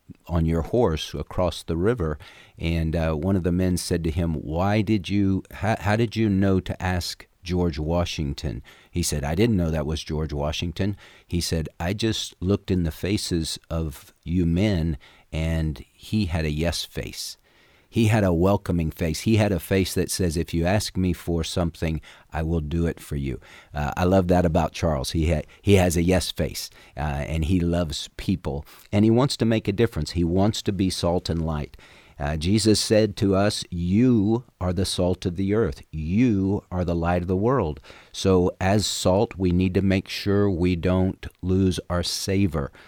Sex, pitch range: male, 80-95 Hz